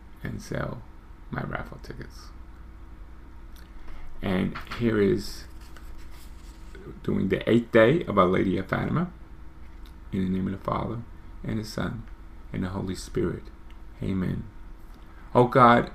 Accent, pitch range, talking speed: American, 70-110 Hz, 125 wpm